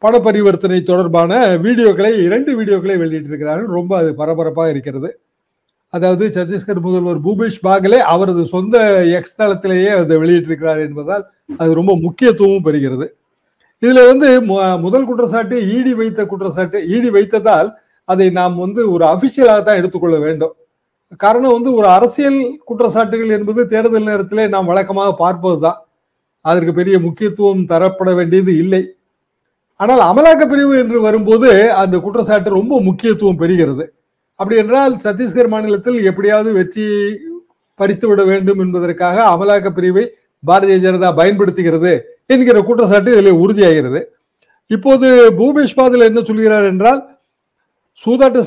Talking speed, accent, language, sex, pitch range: 120 wpm, native, Tamil, male, 180-230 Hz